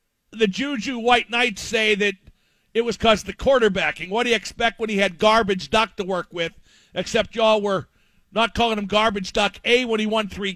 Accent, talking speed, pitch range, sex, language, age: American, 205 wpm, 195-225 Hz, male, English, 50-69